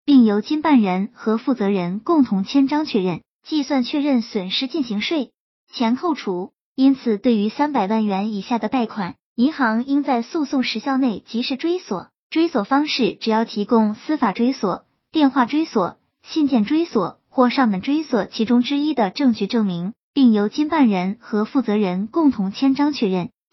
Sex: male